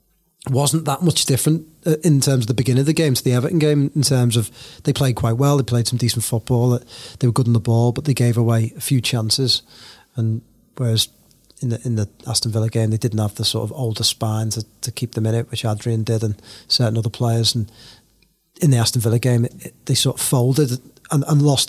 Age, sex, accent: 30-49, male, British